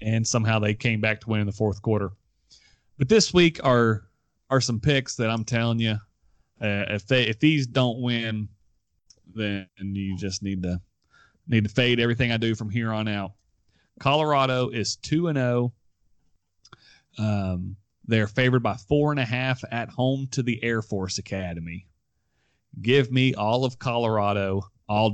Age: 30-49